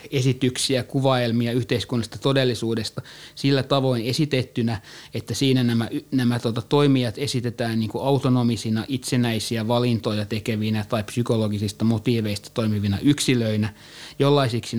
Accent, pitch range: native, 110-135 Hz